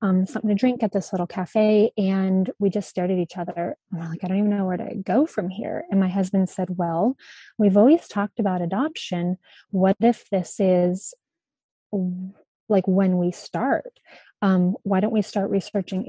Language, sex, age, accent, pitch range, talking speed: English, female, 30-49, American, 185-215 Hz, 190 wpm